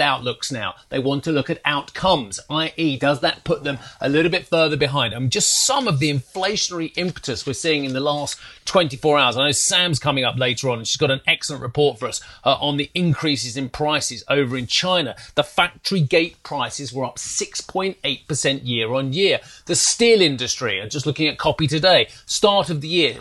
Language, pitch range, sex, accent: English, 135-170 Hz, male, British